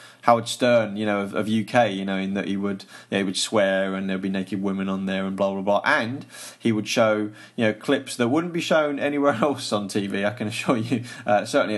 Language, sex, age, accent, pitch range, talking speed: English, male, 30-49, British, 100-130 Hz, 250 wpm